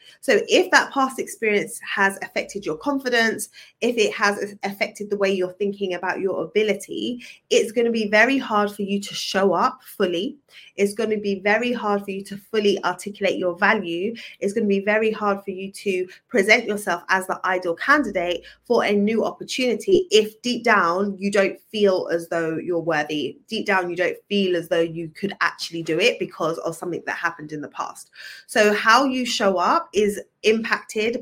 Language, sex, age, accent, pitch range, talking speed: English, female, 20-39, British, 190-235 Hz, 195 wpm